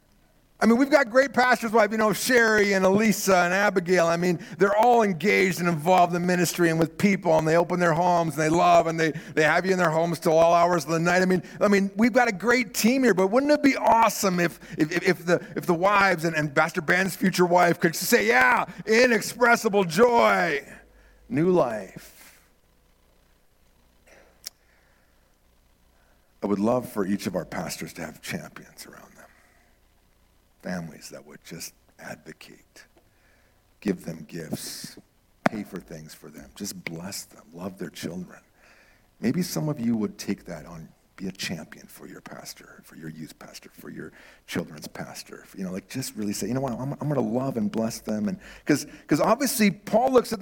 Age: 50-69